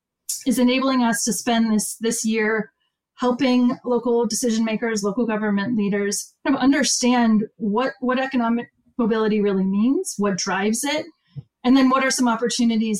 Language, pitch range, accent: English, 205-255 Hz, American